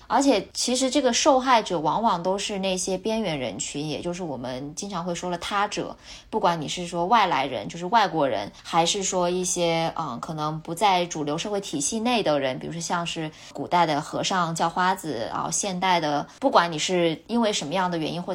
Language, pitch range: Chinese, 170-230 Hz